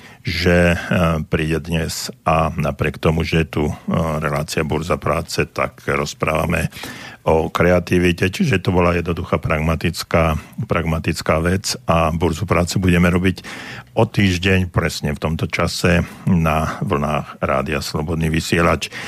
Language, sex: Slovak, male